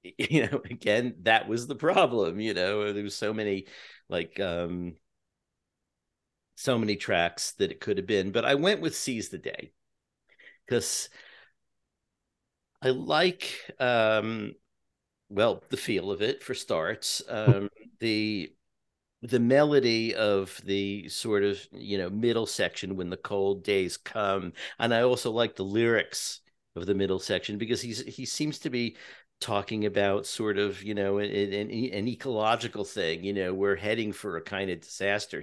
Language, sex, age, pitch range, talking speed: English, male, 50-69, 95-115 Hz, 155 wpm